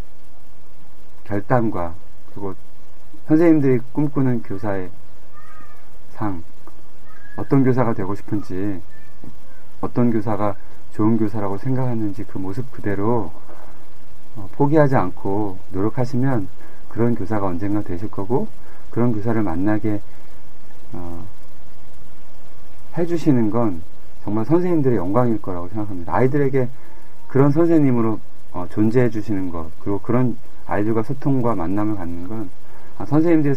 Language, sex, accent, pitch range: Korean, male, native, 95-125 Hz